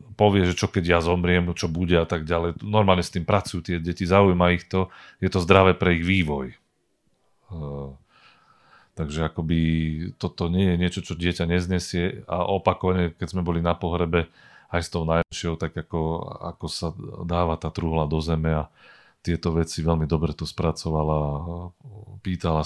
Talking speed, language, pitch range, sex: 170 wpm, Slovak, 80-95 Hz, male